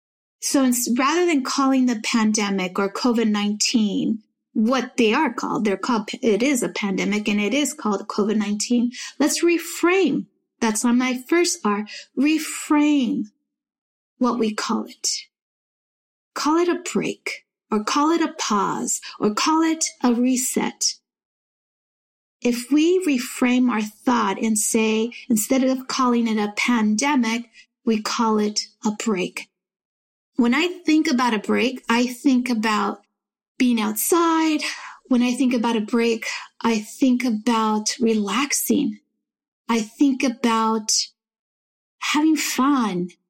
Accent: American